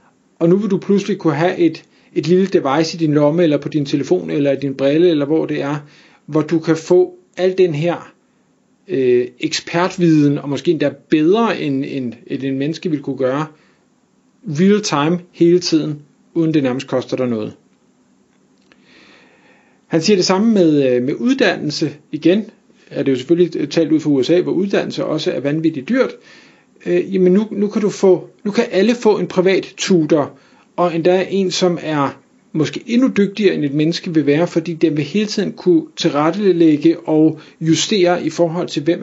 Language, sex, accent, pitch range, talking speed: Danish, male, native, 150-180 Hz, 185 wpm